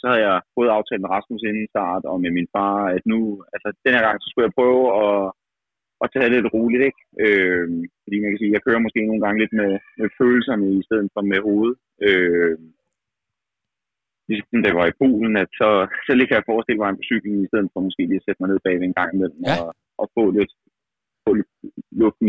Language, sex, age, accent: Danish, male, 30-49, native